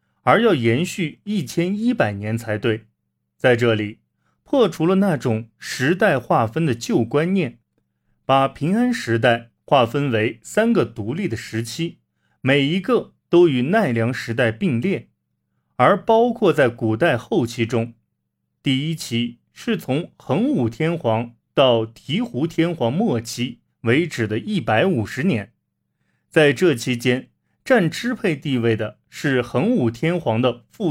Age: 30-49